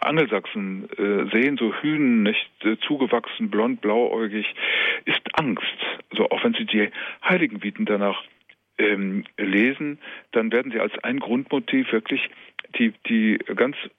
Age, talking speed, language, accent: 50-69, 135 wpm, German, German